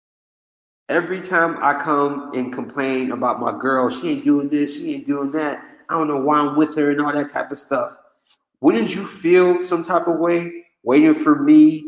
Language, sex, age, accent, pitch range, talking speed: English, male, 30-49, American, 120-175 Hz, 200 wpm